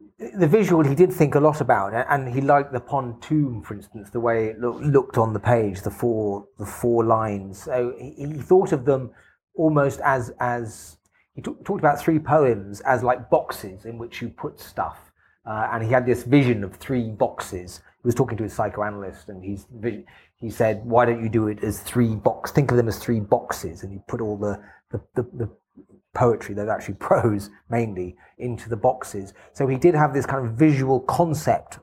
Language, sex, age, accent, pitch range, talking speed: English, male, 30-49, British, 105-135 Hz, 200 wpm